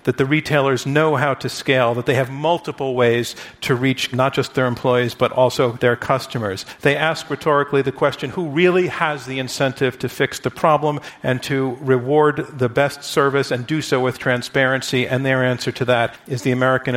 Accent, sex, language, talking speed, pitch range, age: American, male, English, 195 wpm, 125-145 Hz, 50-69